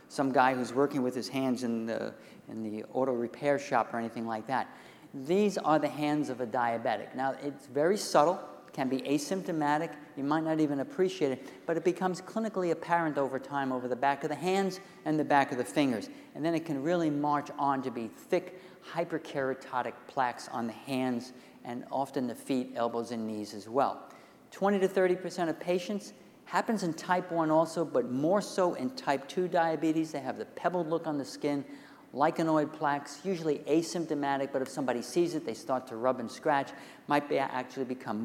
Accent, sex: American, male